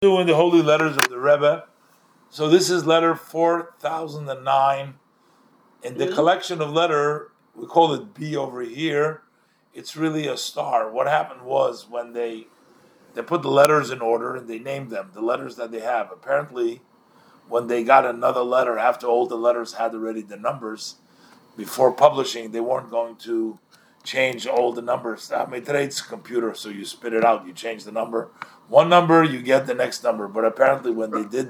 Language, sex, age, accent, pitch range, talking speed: English, male, 50-69, American, 120-160 Hz, 180 wpm